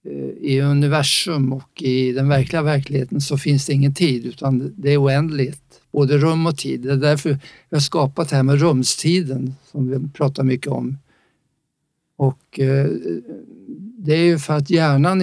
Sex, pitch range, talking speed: male, 135-160 Hz, 160 wpm